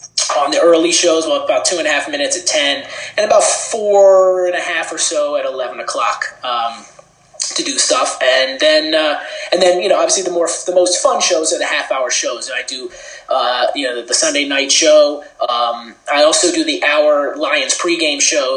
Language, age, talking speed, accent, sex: English, 20-39, 210 wpm, American, male